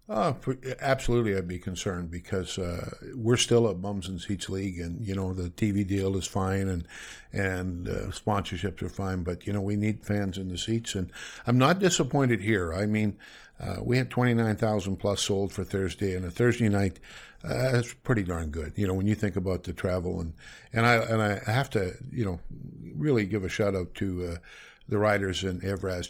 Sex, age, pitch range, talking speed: male, 50-69, 95-115 Hz, 210 wpm